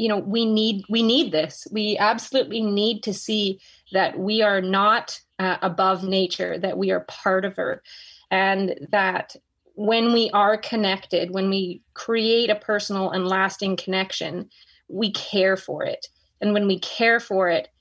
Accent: American